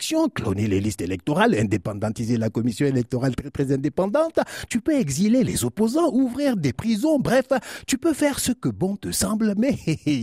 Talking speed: 175 wpm